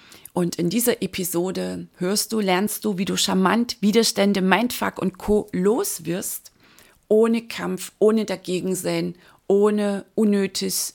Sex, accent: female, German